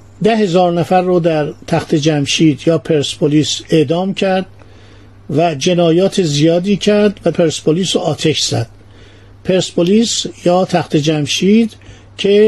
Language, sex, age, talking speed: Persian, male, 50-69, 120 wpm